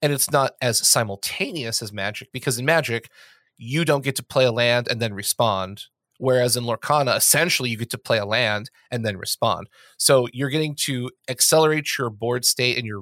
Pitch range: 115-145 Hz